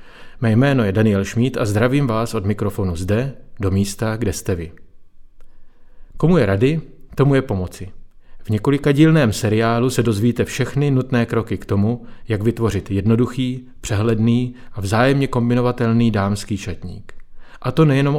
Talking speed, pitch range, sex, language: 145 wpm, 105-130 Hz, male, Czech